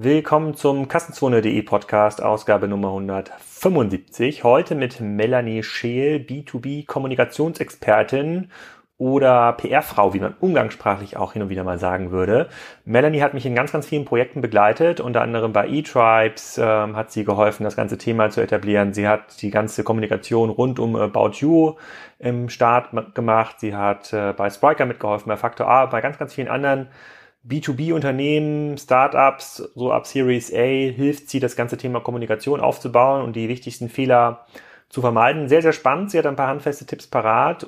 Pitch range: 110-135 Hz